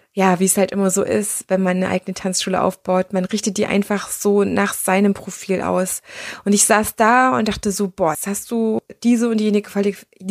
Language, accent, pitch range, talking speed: German, German, 205-260 Hz, 205 wpm